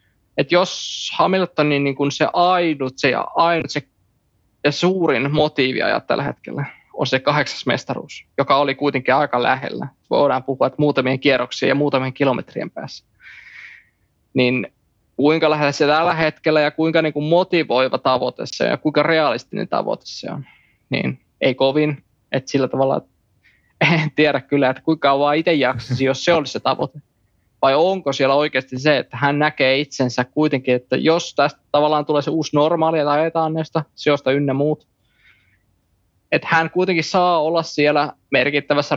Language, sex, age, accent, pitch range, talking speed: Finnish, male, 20-39, native, 130-155 Hz, 155 wpm